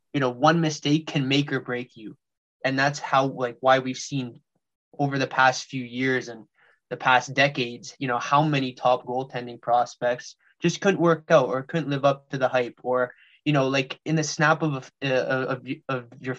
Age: 20-39